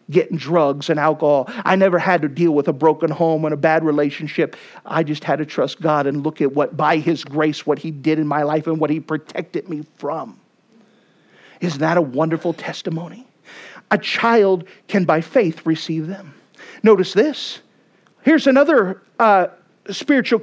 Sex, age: male, 50-69